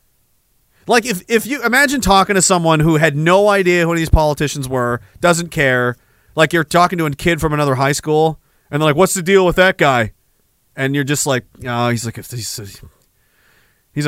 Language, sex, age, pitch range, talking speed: English, male, 40-59, 125-180 Hz, 205 wpm